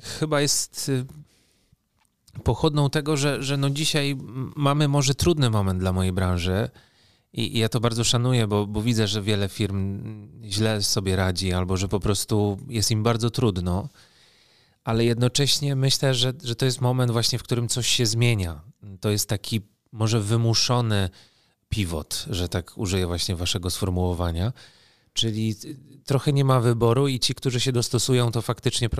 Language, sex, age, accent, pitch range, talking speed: Polish, male, 30-49, native, 105-125 Hz, 155 wpm